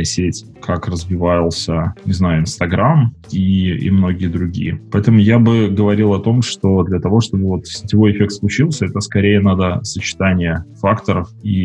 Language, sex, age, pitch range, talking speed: Russian, male, 20-39, 90-105 Hz, 150 wpm